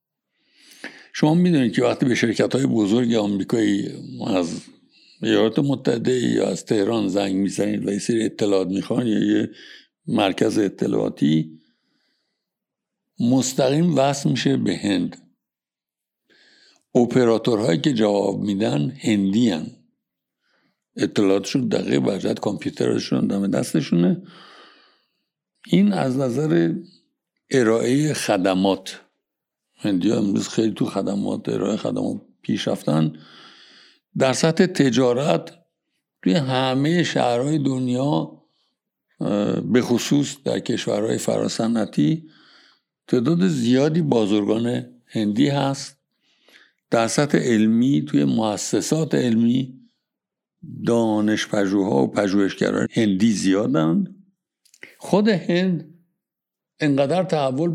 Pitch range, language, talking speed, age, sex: 105-155 Hz, Persian, 95 wpm, 60-79, male